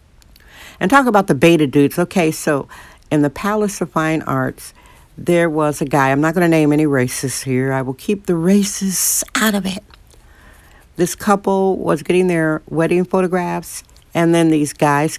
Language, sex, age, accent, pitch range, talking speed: English, female, 60-79, American, 145-180 Hz, 180 wpm